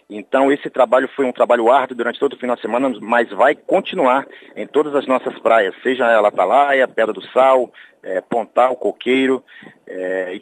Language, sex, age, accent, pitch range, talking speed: Portuguese, male, 40-59, Brazilian, 125-140 Hz, 185 wpm